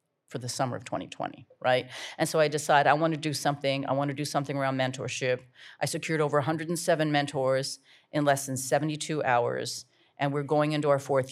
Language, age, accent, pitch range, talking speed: English, 40-59, American, 140-160 Hz, 190 wpm